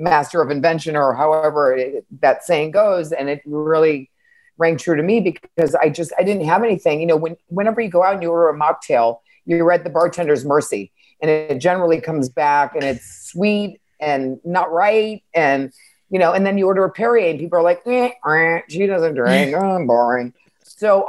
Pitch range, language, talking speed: 135-175 Hz, English, 205 wpm